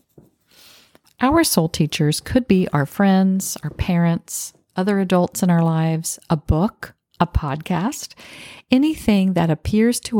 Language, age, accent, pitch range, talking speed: English, 50-69, American, 160-195 Hz, 130 wpm